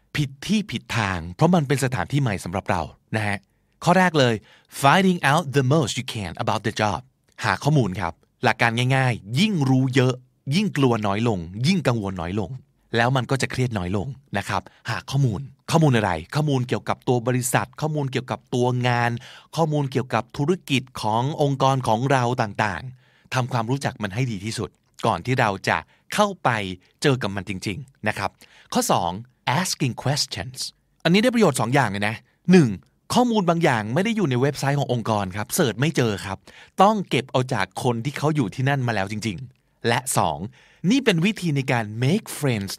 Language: Thai